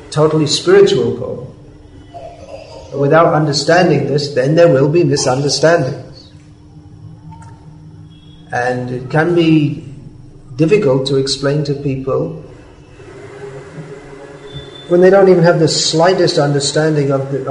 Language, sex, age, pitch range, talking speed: English, male, 40-59, 135-155 Hz, 105 wpm